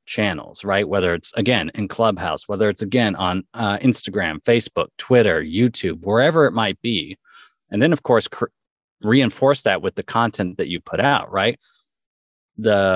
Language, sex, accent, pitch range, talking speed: English, male, American, 95-135 Hz, 160 wpm